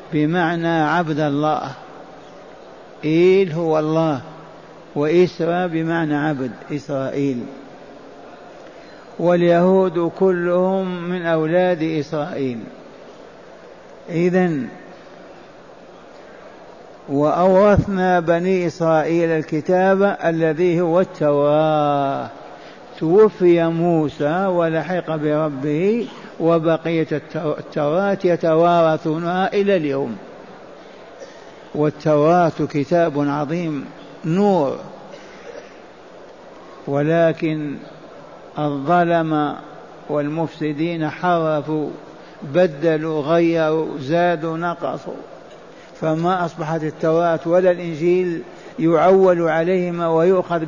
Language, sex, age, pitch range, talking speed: Arabic, male, 60-79, 155-180 Hz, 60 wpm